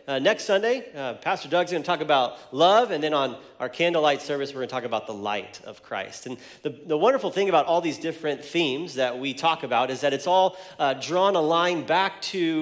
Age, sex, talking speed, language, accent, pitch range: 30-49, male, 230 wpm, English, American, 130-170 Hz